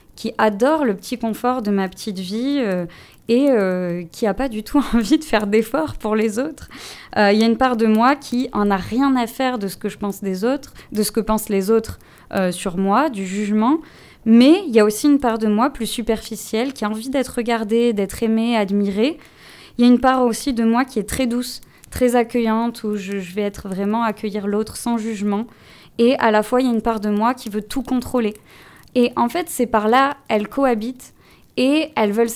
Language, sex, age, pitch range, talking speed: French, female, 20-39, 210-255 Hz, 230 wpm